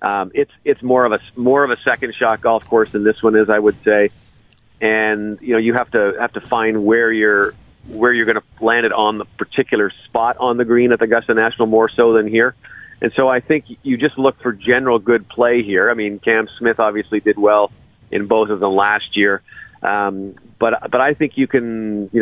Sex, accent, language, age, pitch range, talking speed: male, American, English, 40-59, 105-120 Hz, 230 wpm